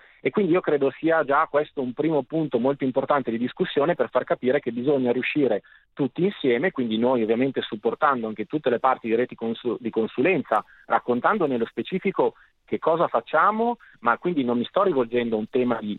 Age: 30-49